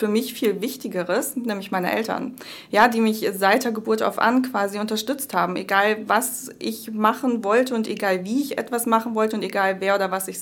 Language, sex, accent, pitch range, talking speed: German, female, German, 190-225 Hz, 205 wpm